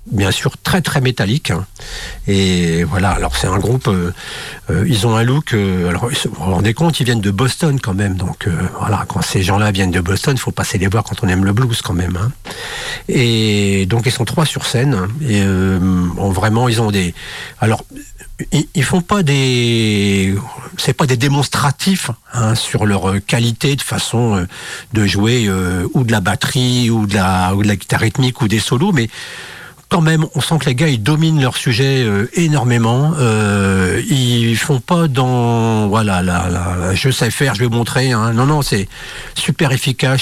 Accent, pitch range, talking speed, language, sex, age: French, 100-135 Hz, 205 wpm, French, male, 50-69